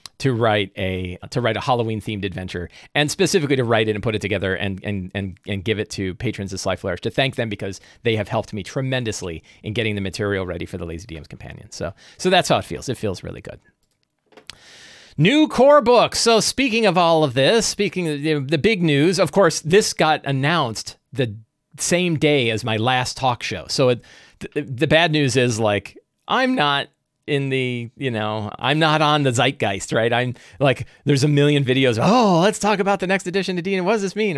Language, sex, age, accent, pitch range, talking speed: English, male, 40-59, American, 95-140 Hz, 215 wpm